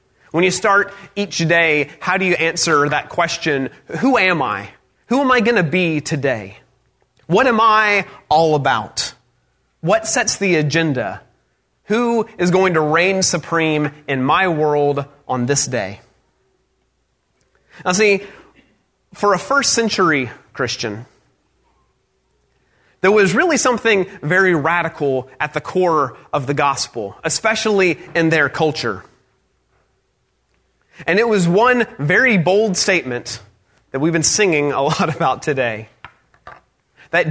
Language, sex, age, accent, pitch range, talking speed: English, male, 30-49, American, 145-200 Hz, 130 wpm